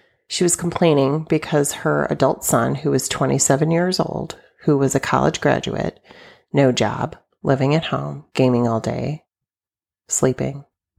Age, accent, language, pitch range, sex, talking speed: 30-49, American, English, 140-205 Hz, female, 140 wpm